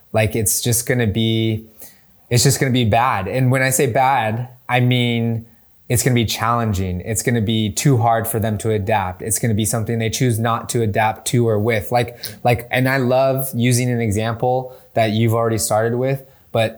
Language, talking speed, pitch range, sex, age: English, 220 wpm, 105-120 Hz, male, 20-39